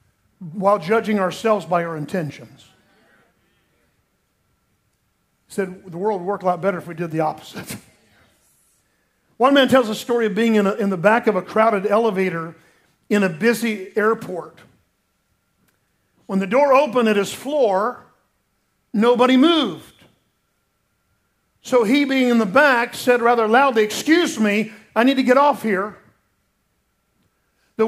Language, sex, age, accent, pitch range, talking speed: English, male, 50-69, American, 190-260 Hz, 140 wpm